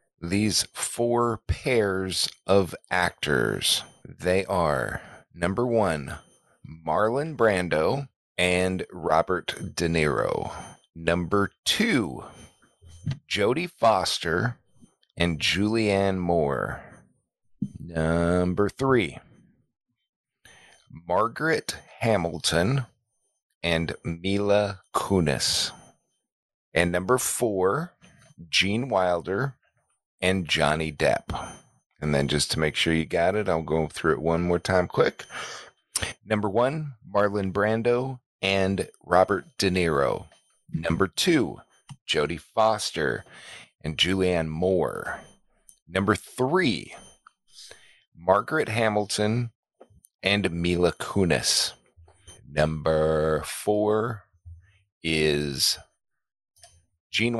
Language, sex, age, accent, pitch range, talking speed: English, male, 40-59, American, 85-110 Hz, 85 wpm